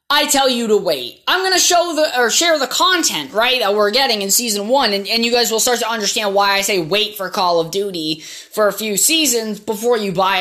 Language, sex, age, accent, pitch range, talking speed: English, female, 20-39, American, 220-300 Hz, 255 wpm